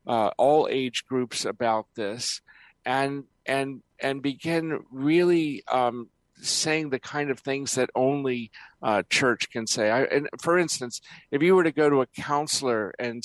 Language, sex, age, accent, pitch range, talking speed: English, male, 50-69, American, 120-135 Hz, 165 wpm